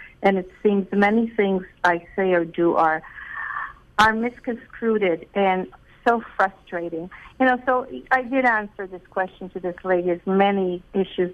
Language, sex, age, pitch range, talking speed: English, female, 50-69, 180-215 Hz, 155 wpm